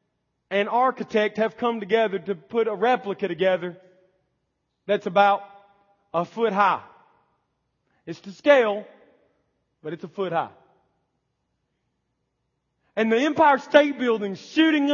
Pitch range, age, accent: 160-265 Hz, 40-59, American